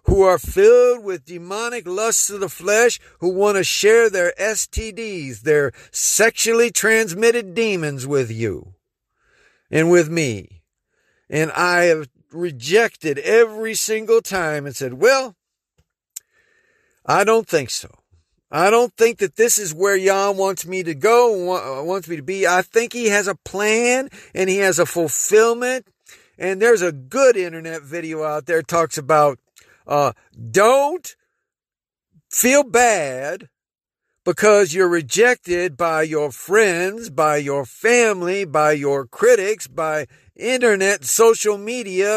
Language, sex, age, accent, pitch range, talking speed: English, male, 50-69, American, 165-235 Hz, 135 wpm